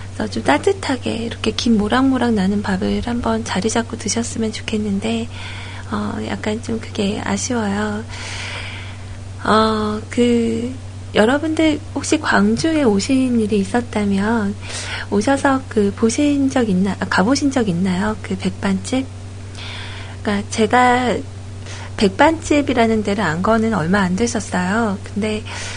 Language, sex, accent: Korean, female, native